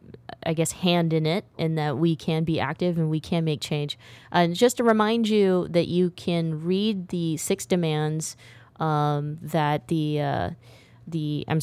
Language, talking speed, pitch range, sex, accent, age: English, 175 wpm, 145-170 Hz, female, American, 20-39